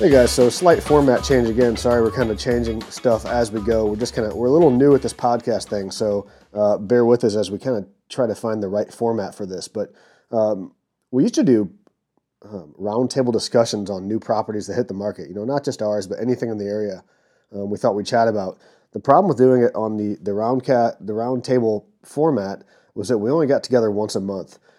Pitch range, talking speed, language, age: 105-130 Hz, 245 wpm, English, 30-49